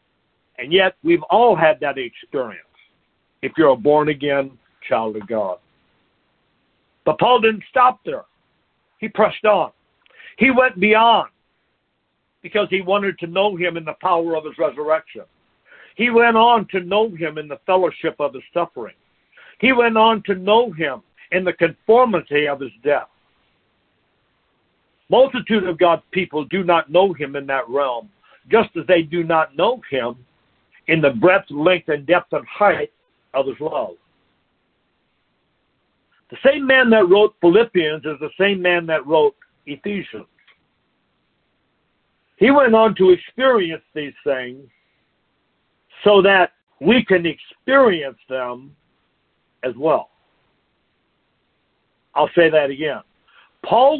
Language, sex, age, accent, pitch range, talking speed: English, male, 60-79, American, 150-220 Hz, 135 wpm